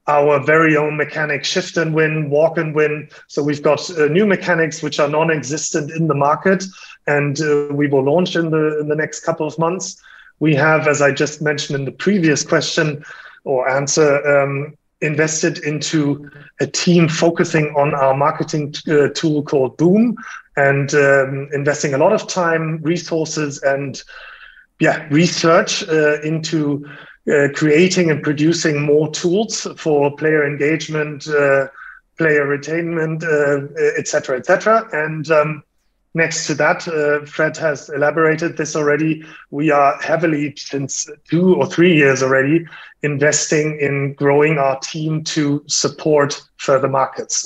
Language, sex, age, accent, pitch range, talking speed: English, male, 30-49, German, 145-165 Hz, 150 wpm